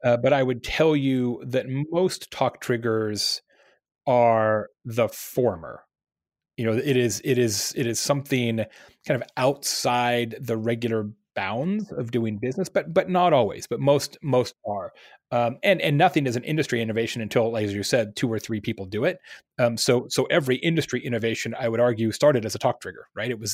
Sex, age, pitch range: male, 30-49, 115-135 Hz